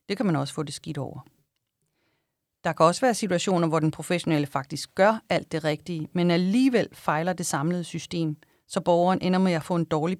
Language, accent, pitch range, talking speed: English, Danish, 155-195 Hz, 205 wpm